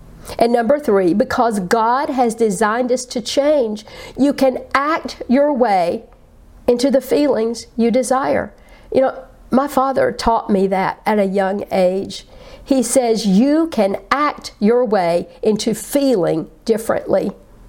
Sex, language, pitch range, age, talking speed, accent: female, English, 200-255 Hz, 50-69, 140 wpm, American